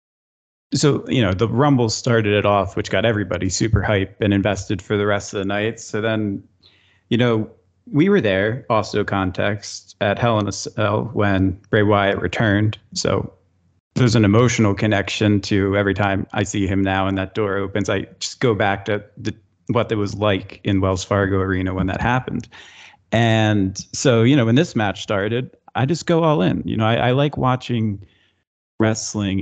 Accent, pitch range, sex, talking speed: American, 100-115 Hz, male, 185 wpm